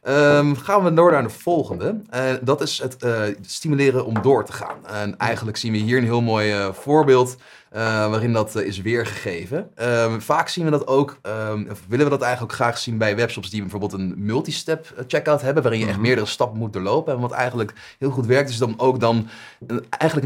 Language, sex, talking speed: Dutch, male, 225 wpm